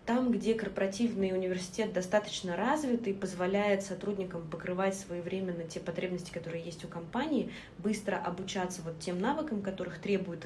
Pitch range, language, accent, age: 170-200 Hz, Russian, native, 20-39